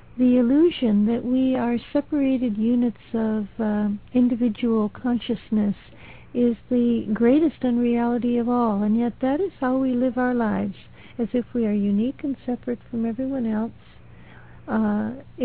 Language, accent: English, American